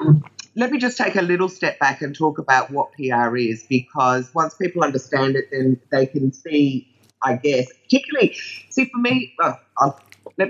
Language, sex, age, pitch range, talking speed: English, female, 30-49, 130-170 Hz, 170 wpm